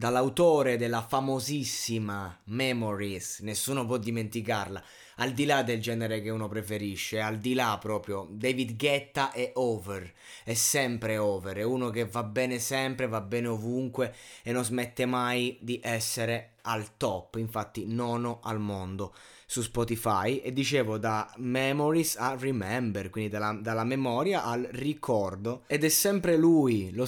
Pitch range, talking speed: 110-135 Hz, 145 wpm